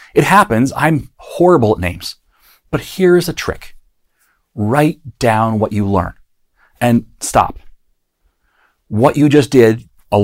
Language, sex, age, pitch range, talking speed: English, male, 40-59, 100-140 Hz, 130 wpm